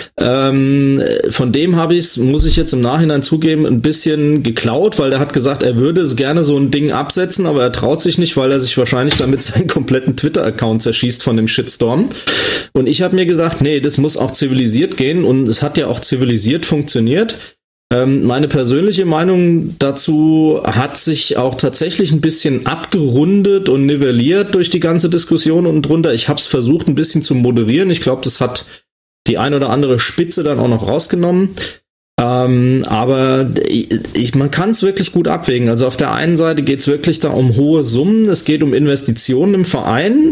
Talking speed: 190 wpm